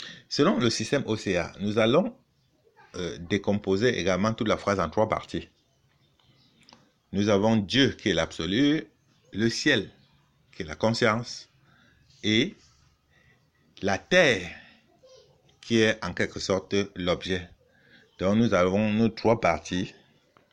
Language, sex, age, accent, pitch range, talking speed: French, male, 50-69, French, 90-110 Hz, 125 wpm